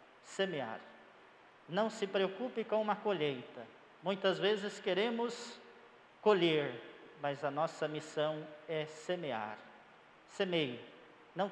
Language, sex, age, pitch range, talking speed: Portuguese, male, 50-69, 150-195 Hz, 100 wpm